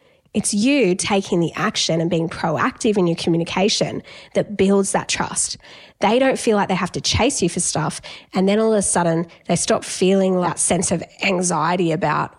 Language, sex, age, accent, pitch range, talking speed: English, female, 10-29, Australian, 185-230 Hz, 195 wpm